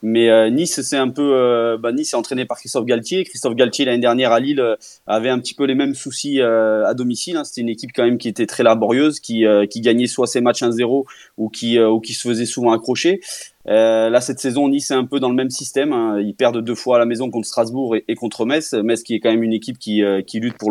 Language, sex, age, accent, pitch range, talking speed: French, male, 20-39, French, 110-135 Hz, 280 wpm